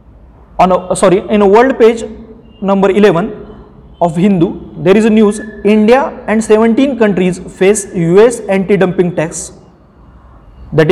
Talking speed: 130 wpm